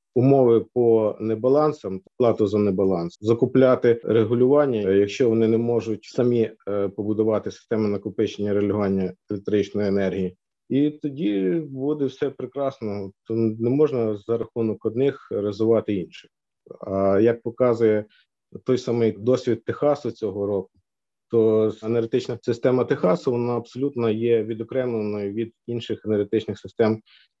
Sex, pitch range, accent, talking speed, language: male, 100-120 Hz, native, 115 wpm, Ukrainian